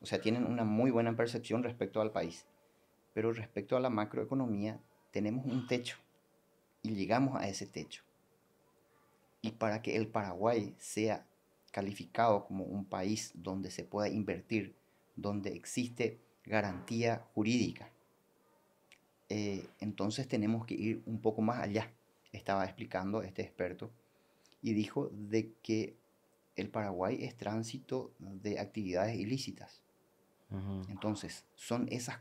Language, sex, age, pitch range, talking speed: Spanish, male, 30-49, 100-115 Hz, 125 wpm